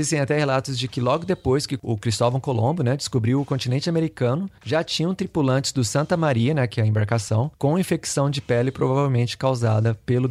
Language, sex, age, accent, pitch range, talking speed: Portuguese, male, 30-49, Brazilian, 120-150 Hz, 200 wpm